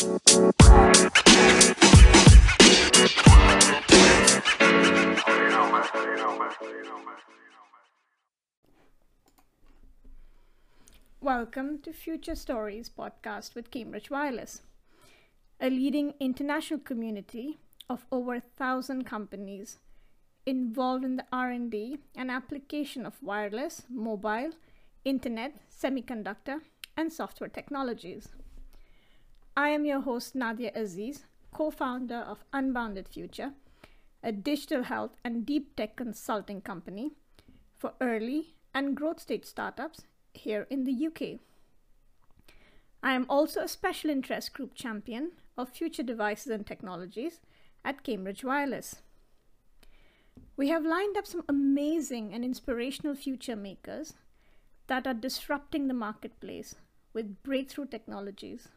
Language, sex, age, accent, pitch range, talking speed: English, female, 30-49, American, 225-290 Hz, 95 wpm